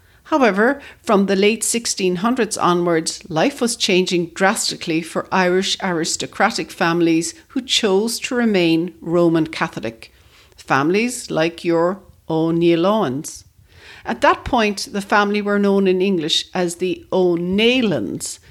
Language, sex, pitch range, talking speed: English, female, 165-220 Hz, 115 wpm